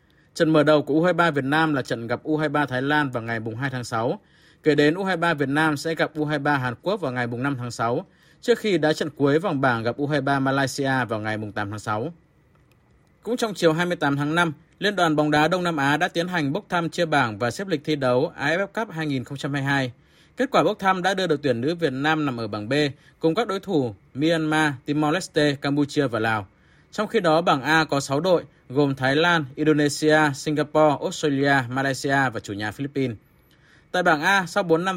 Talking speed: 215 wpm